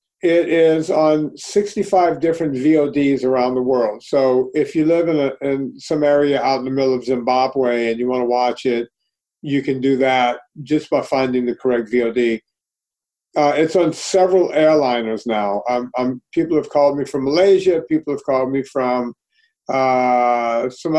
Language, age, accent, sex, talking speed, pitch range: English, 50-69, American, male, 165 wpm, 130-155 Hz